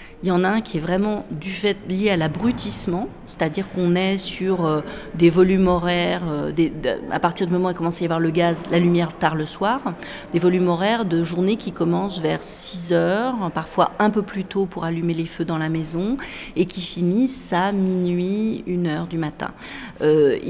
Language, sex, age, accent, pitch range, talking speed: French, female, 40-59, French, 160-185 Hz, 210 wpm